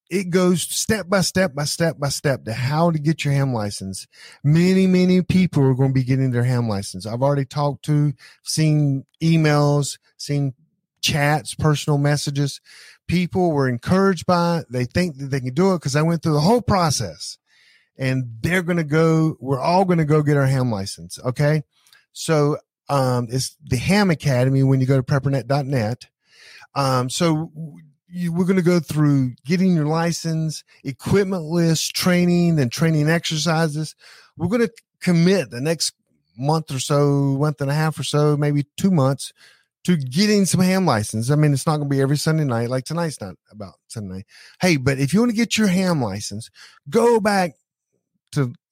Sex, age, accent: male, 40-59, American